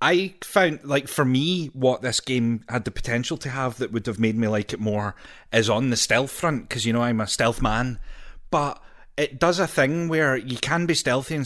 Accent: British